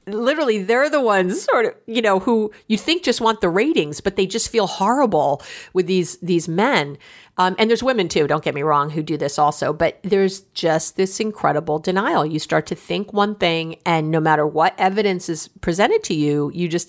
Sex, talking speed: female, 215 wpm